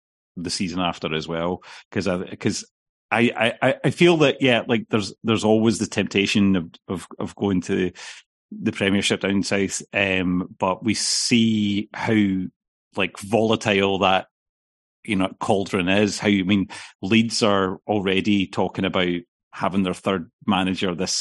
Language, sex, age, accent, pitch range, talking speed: English, male, 30-49, British, 95-105 Hz, 155 wpm